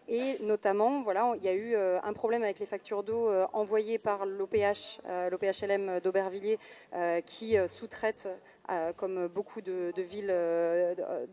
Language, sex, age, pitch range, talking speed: French, female, 30-49, 195-230 Hz, 145 wpm